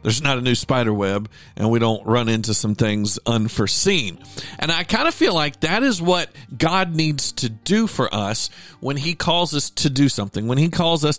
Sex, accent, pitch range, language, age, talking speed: male, American, 110-150 Hz, English, 50-69, 215 wpm